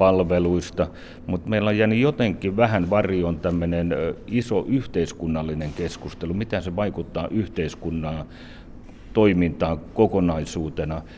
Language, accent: Finnish, native